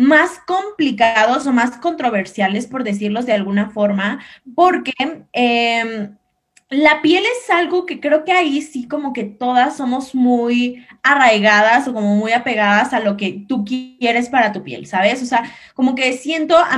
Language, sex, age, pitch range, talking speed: Spanish, female, 20-39, 210-270 Hz, 165 wpm